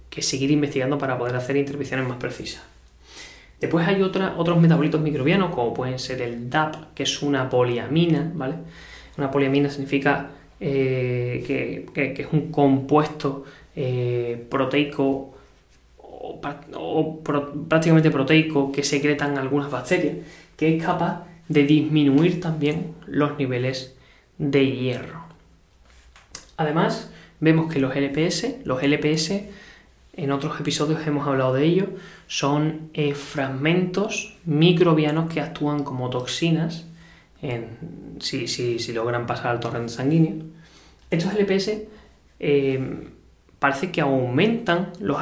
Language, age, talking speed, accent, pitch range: Spanish, 20-39, 120 wpm, Spanish, 130-165 Hz